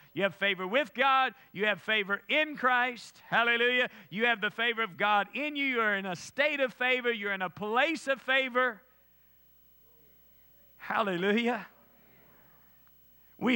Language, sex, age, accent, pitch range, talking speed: English, male, 50-69, American, 210-265 Hz, 150 wpm